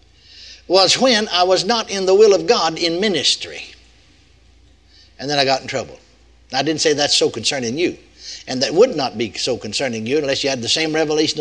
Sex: male